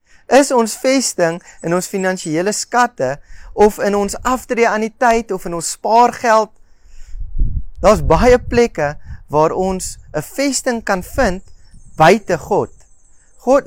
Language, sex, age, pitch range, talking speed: English, male, 30-49, 145-235 Hz, 130 wpm